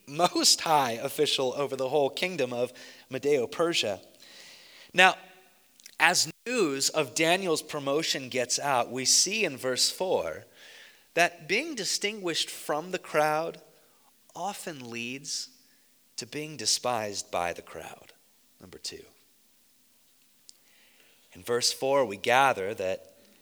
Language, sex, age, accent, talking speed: English, male, 30-49, American, 115 wpm